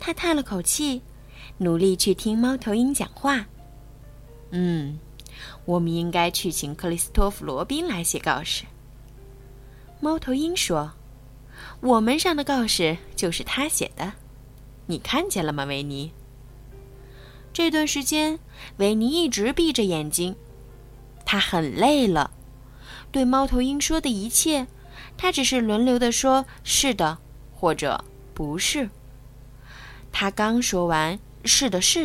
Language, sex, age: Chinese, female, 20-39